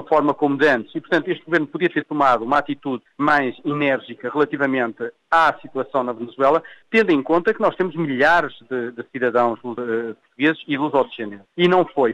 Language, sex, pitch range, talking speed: Portuguese, male, 135-175 Hz, 185 wpm